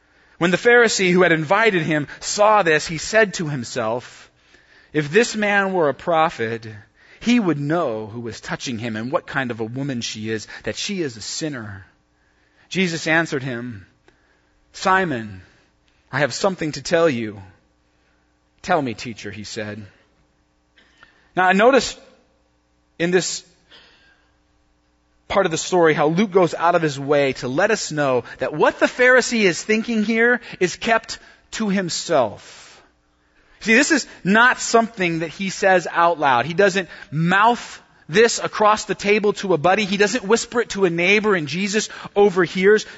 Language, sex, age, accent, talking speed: English, male, 30-49, American, 160 wpm